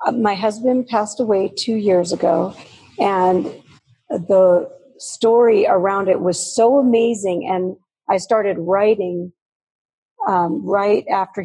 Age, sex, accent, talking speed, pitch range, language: 40-59, female, American, 115 wpm, 180-210 Hz, English